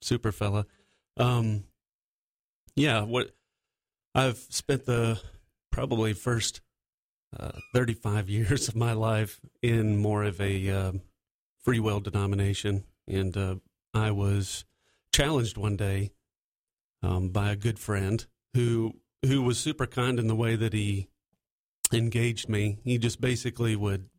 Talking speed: 130 wpm